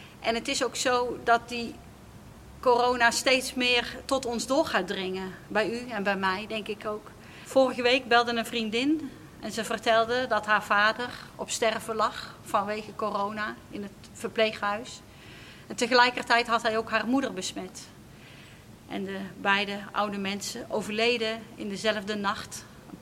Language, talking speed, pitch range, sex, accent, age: Dutch, 155 wpm, 205-235 Hz, female, Dutch, 40-59